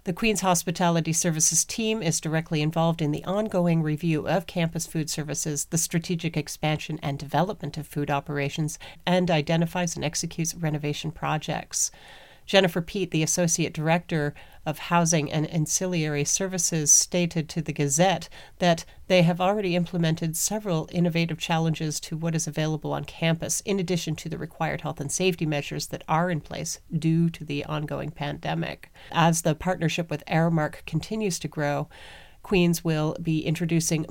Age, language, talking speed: 40-59, English, 155 wpm